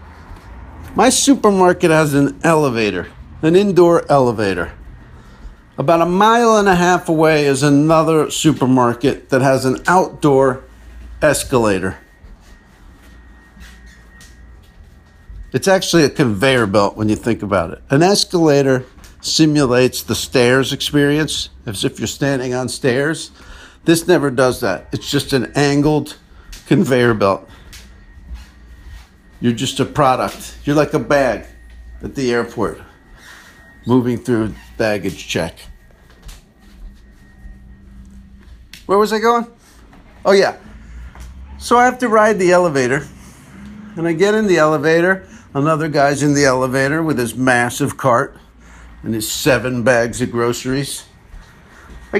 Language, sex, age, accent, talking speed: English, male, 50-69, American, 120 wpm